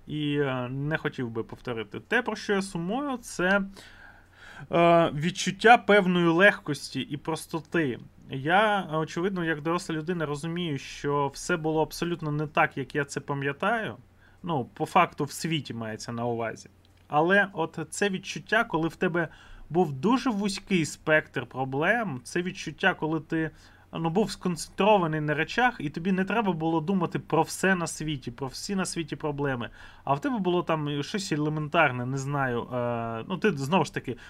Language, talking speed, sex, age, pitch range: Ukrainian, 155 wpm, male, 20-39, 130-175 Hz